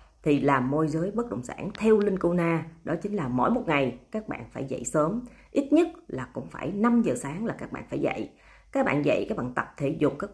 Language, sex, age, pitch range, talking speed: Vietnamese, female, 30-49, 135-195 Hz, 255 wpm